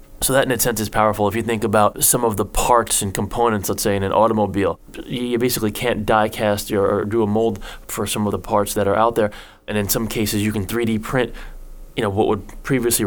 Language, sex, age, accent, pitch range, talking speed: English, male, 20-39, American, 105-120 Hz, 250 wpm